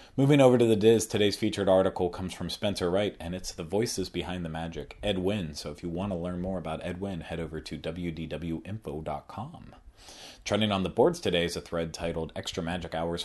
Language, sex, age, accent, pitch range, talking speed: English, male, 30-49, American, 85-95 Hz, 205 wpm